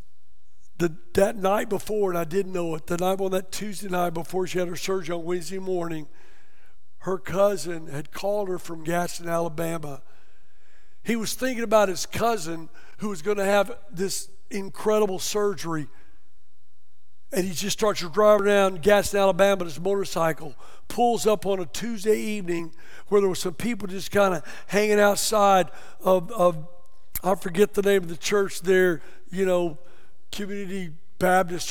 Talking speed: 160 wpm